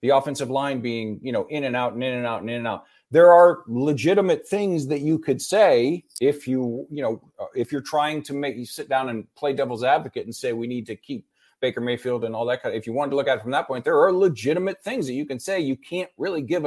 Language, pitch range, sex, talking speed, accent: English, 130-175 Hz, male, 265 wpm, American